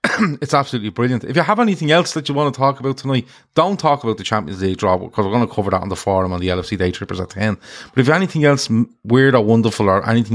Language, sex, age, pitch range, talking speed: English, male, 30-49, 95-120 Hz, 285 wpm